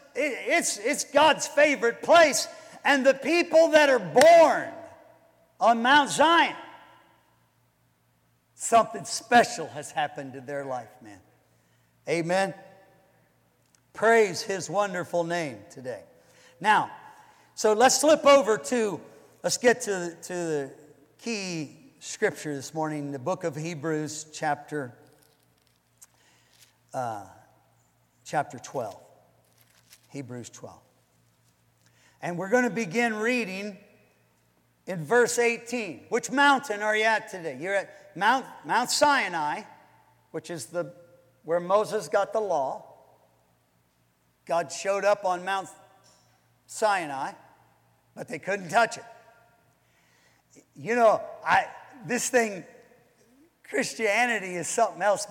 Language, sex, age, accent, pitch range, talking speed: English, male, 50-69, American, 155-240 Hz, 105 wpm